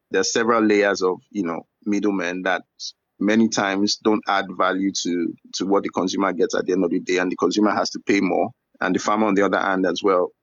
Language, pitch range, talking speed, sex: English, 95-110 Hz, 240 wpm, male